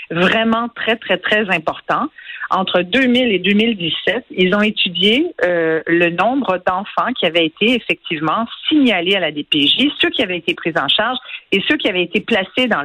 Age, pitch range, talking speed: 50-69, 175-250 Hz, 175 wpm